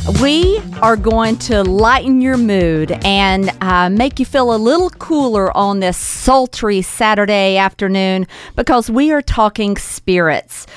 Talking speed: 140 wpm